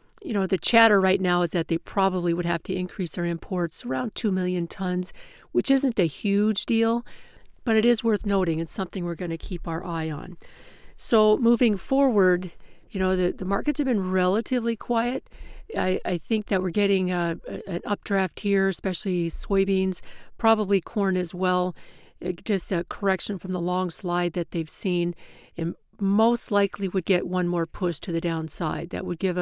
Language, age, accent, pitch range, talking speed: English, 50-69, American, 175-205 Hz, 190 wpm